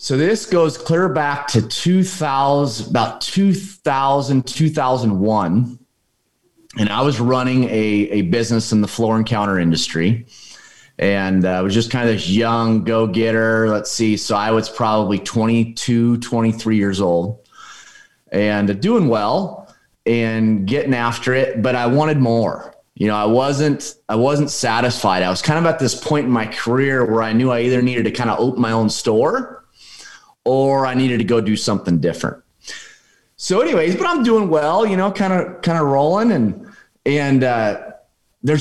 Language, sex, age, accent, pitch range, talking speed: English, male, 30-49, American, 110-150 Hz, 170 wpm